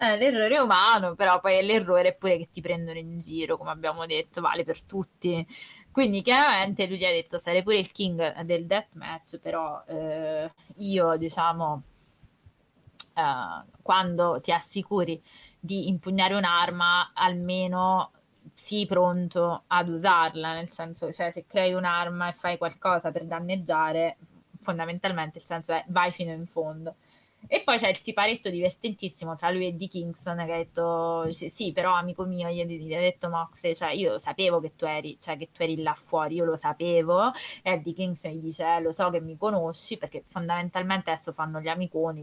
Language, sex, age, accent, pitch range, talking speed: Italian, female, 20-39, native, 165-185 Hz, 170 wpm